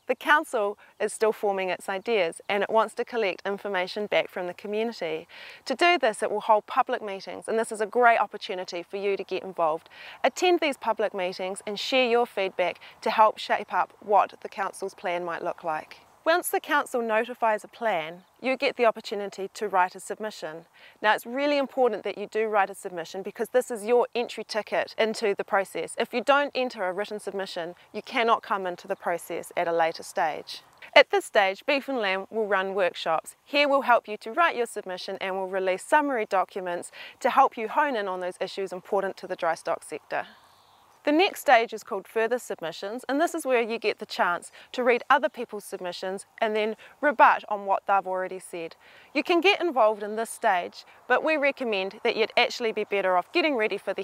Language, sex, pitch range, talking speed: English, female, 190-245 Hz, 210 wpm